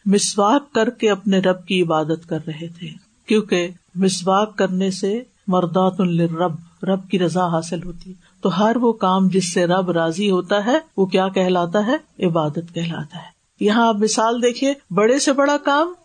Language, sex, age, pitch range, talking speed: Urdu, female, 50-69, 175-240 Hz, 185 wpm